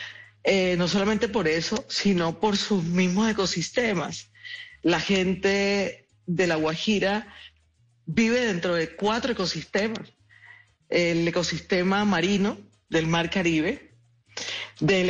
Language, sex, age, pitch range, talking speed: Spanish, female, 40-59, 165-200 Hz, 105 wpm